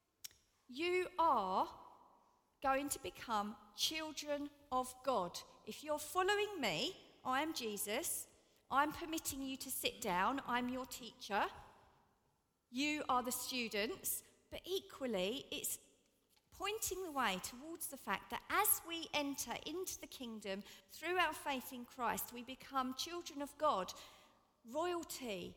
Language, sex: English, female